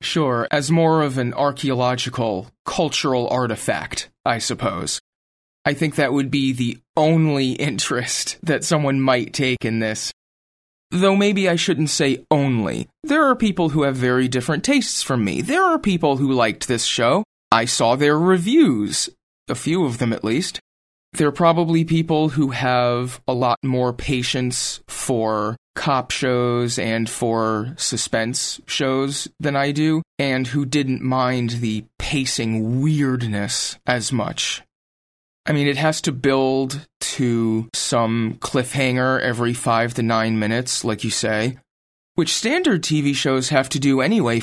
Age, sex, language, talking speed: 30-49, male, English, 150 wpm